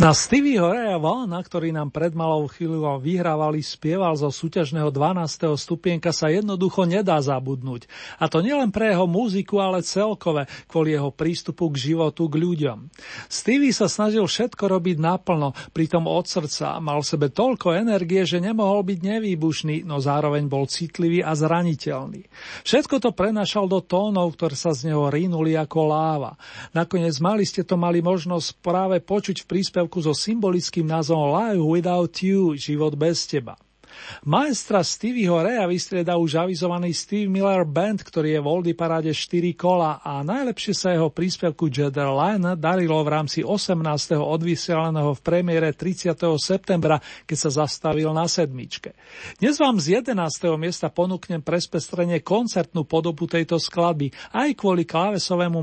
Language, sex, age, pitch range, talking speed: Slovak, male, 40-59, 155-185 Hz, 150 wpm